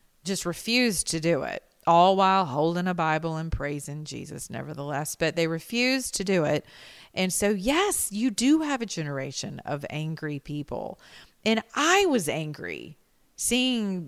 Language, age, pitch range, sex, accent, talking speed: English, 40-59, 145-190 Hz, female, American, 155 wpm